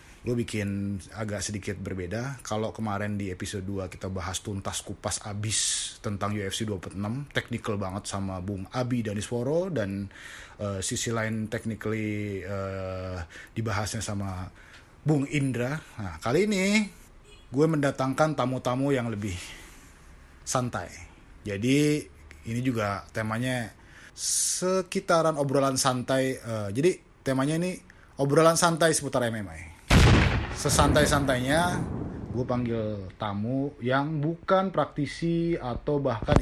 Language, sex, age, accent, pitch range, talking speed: Indonesian, male, 20-39, native, 100-140 Hz, 110 wpm